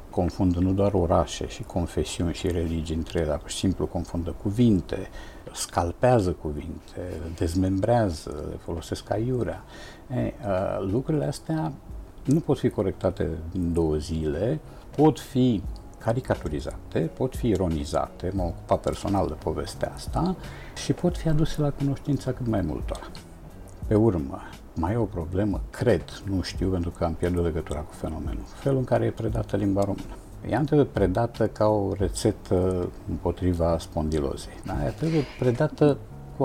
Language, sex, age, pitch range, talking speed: Romanian, male, 60-79, 85-115 Hz, 145 wpm